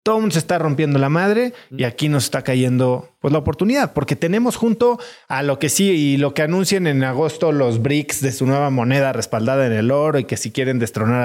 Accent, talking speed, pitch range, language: Mexican, 225 wpm, 125-170 Hz, Spanish